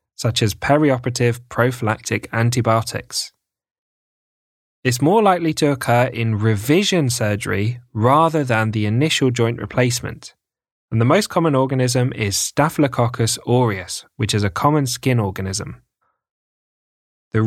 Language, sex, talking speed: English, male, 115 wpm